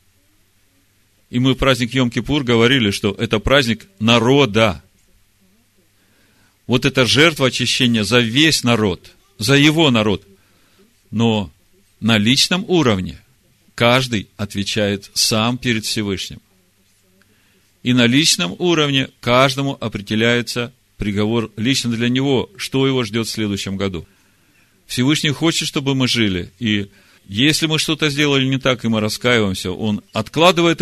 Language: Russian